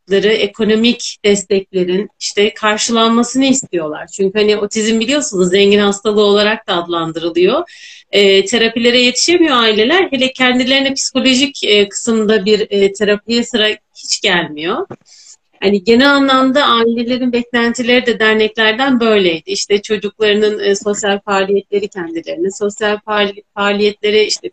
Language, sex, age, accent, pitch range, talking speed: Turkish, female, 40-59, native, 200-240 Hz, 110 wpm